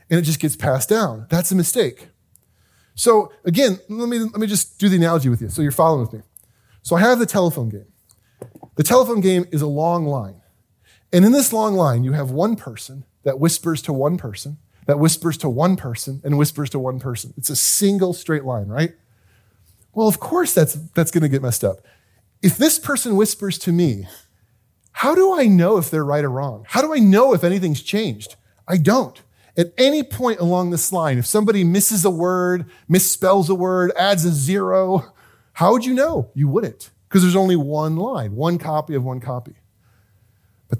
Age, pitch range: 30-49, 130-200 Hz